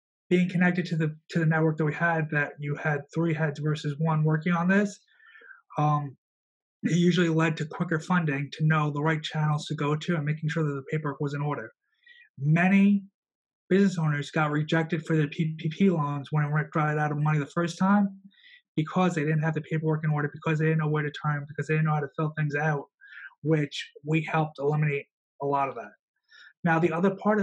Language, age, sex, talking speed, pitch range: English, 30-49, male, 220 wpm, 150-170 Hz